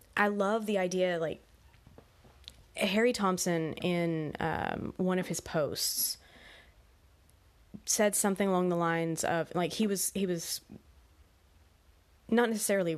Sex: female